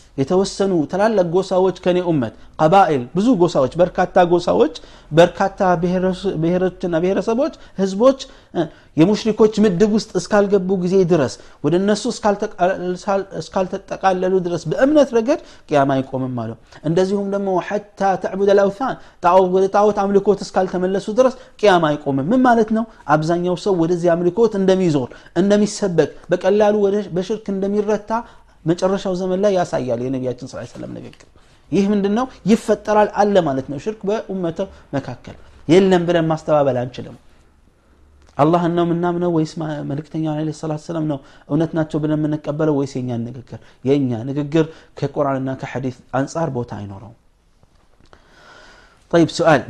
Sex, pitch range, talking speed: male, 140-195 Hz, 120 wpm